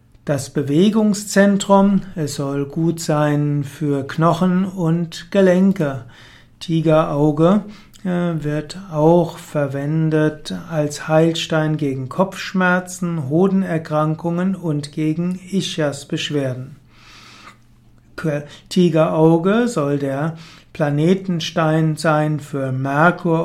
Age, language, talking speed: 60-79, German, 75 wpm